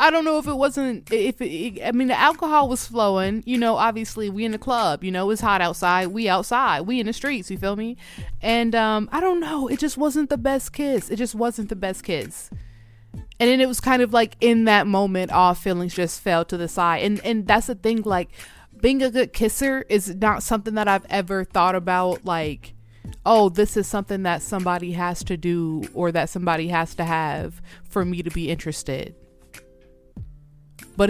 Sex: female